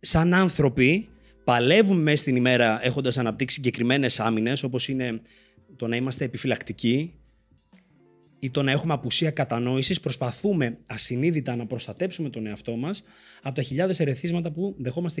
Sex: male